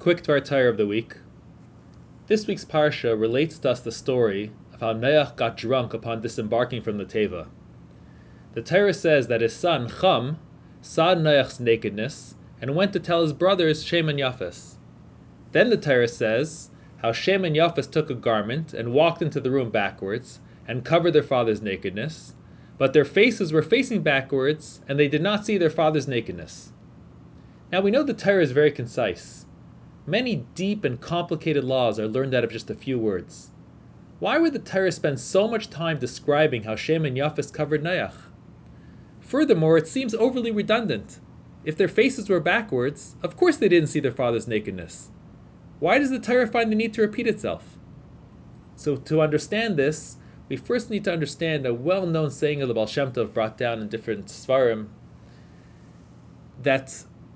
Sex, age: male, 20-39